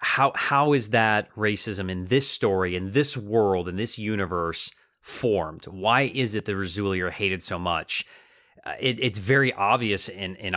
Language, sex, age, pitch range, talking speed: English, male, 30-49, 95-115 Hz, 170 wpm